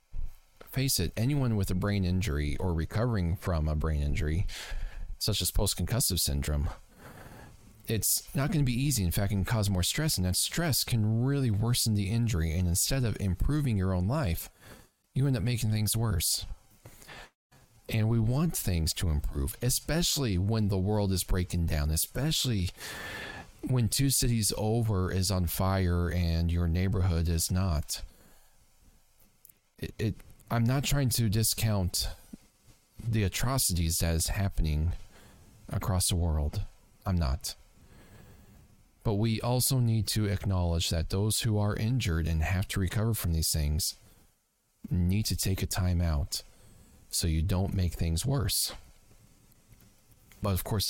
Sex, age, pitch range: male, 40-59, 90-115 Hz